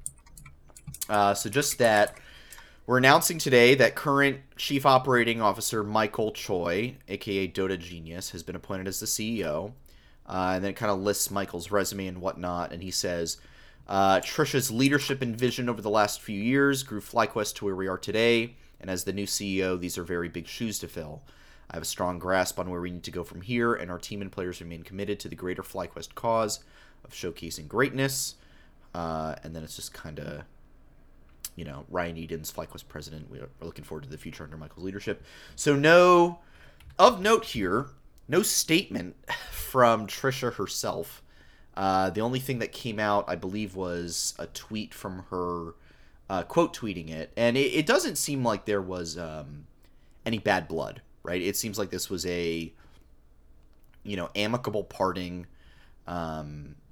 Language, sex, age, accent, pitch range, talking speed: English, male, 30-49, American, 80-110 Hz, 175 wpm